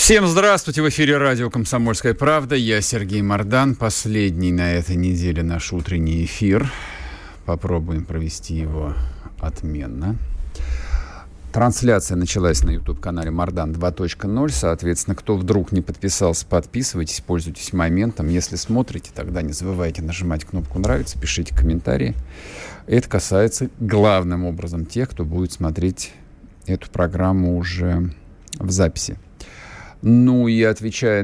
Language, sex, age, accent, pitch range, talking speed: Russian, male, 40-59, native, 85-105 Hz, 120 wpm